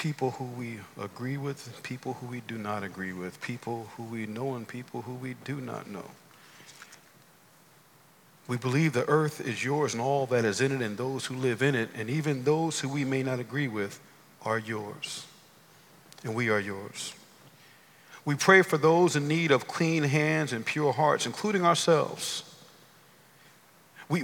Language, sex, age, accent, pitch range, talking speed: English, male, 50-69, American, 130-170 Hz, 175 wpm